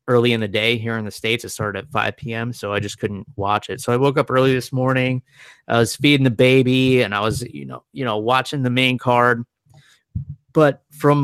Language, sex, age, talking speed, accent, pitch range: English, male, 20-39, 235 wpm, American, 120-150 Hz